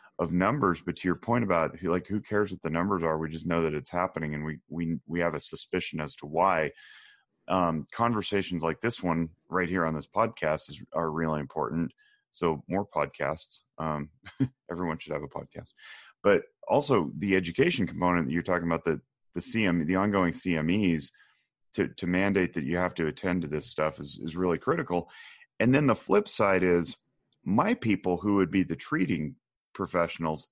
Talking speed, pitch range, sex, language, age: 195 wpm, 80-95 Hz, male, English, 30-49